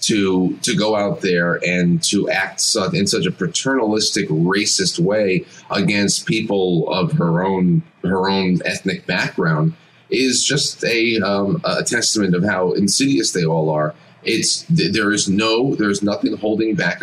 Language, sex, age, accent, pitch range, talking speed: English, male, 30-49, American, 90-140 Hz, 150 wpm